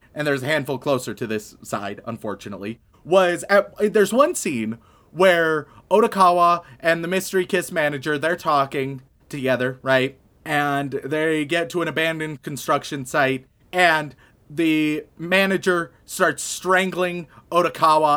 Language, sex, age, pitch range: English, male, 30-49, 135-180 Hz